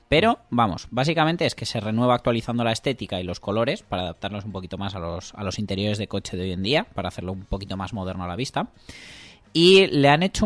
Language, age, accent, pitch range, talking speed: Spanish, 20-39, Spanish, 105-135 Hz, 235 wpm